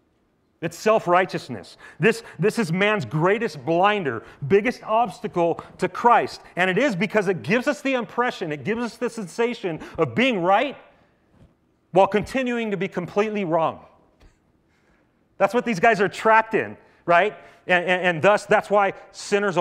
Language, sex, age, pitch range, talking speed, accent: English, male, 40-59, 120-195 Hz, 155 wpm, American